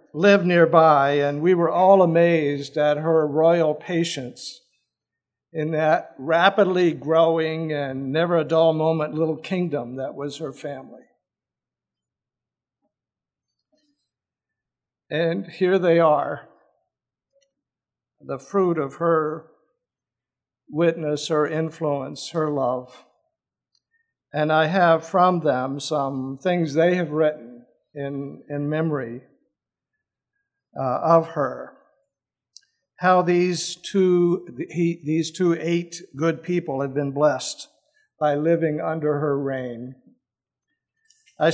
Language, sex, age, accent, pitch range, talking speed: English, male, 60-79, American, 145-175 Hz, 105 wpm